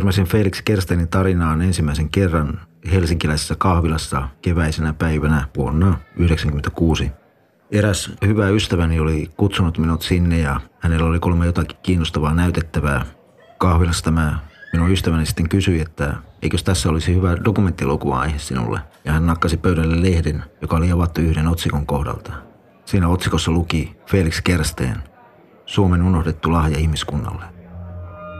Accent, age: native, 30-49